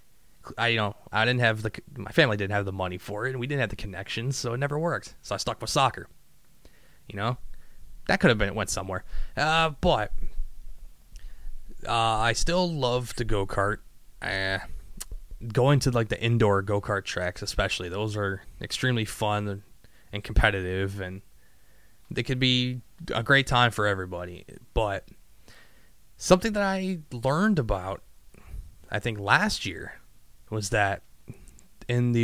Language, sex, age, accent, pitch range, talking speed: English, male, 20-39, American, 100-125 Hz, 160 wpm